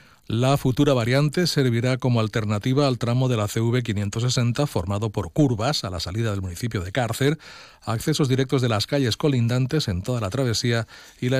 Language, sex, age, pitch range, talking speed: Spanish, male, 40-59, 115-145 Hz, 180 wpm